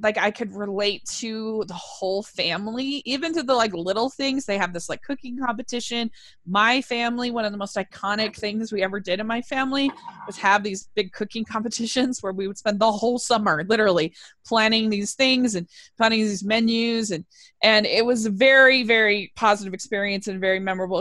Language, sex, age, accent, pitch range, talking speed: English, female, 20-39, American, 195-240 Hz, 190 wpm